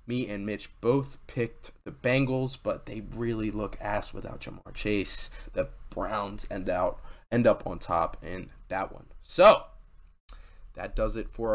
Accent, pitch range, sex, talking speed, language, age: American, 105-140 Hz, male, 160 wpm, English, 20-39